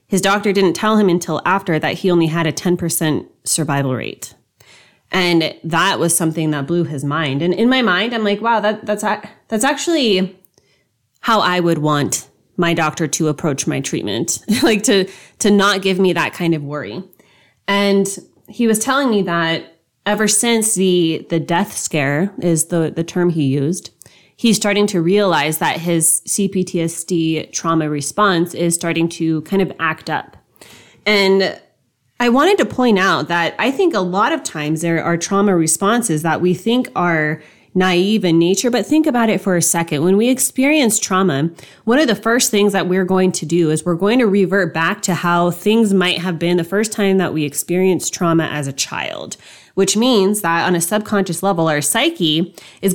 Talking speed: 185 wpm